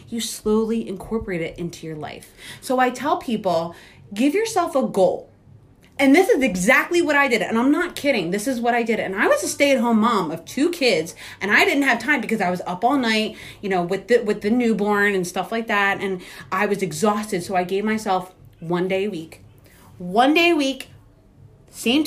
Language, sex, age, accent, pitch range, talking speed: English, female, 30-49, American, 195-255 Hz, 215 wpm